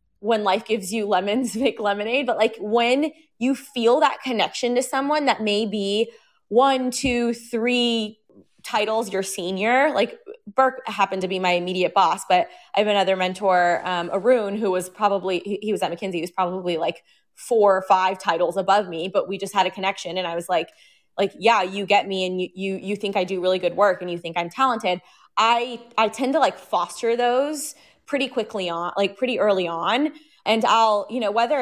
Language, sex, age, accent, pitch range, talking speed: English, female, 20-39, American, 190-235 Hz, 205 wpm